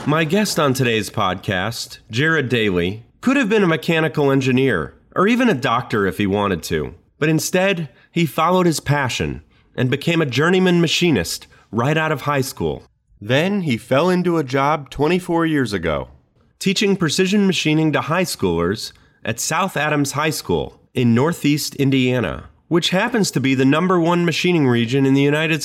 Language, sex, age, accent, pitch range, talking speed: English, male, 30-49, American, 120-165 Hz, 170 wpm